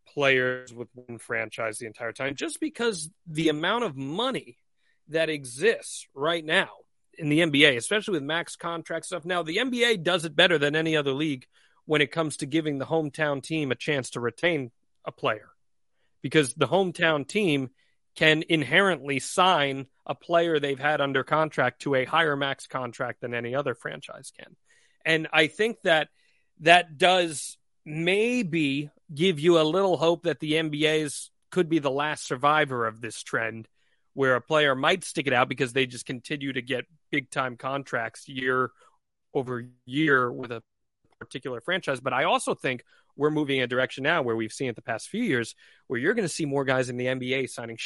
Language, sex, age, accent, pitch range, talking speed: English, male, 30-49, American, 130-165 Hz, 185 wpm